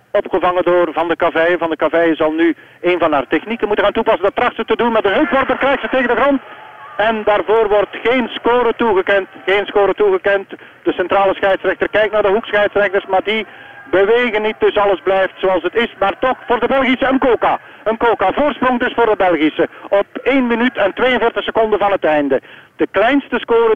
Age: 50-69